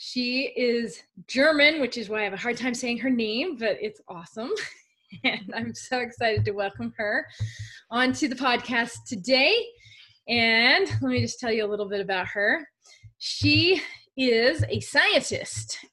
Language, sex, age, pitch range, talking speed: English, female, 20-39, 200-250 Hz, 160 wpm